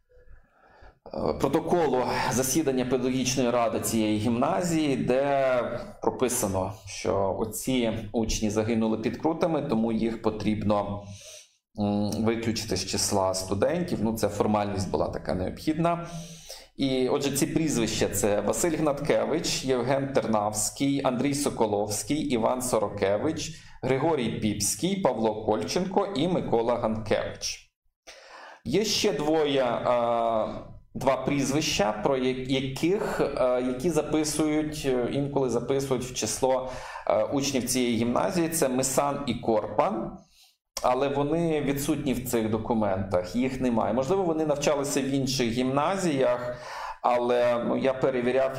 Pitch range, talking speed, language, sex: 110-140 Hz, 105 wpm, Ukrainian, male